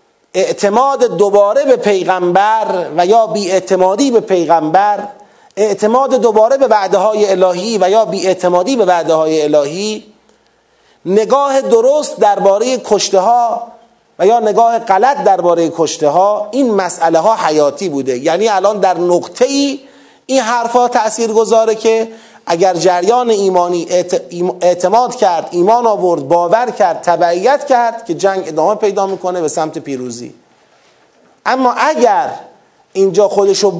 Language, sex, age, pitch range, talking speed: Persian, male, 30-49, 175-225 Hz, 130 wpm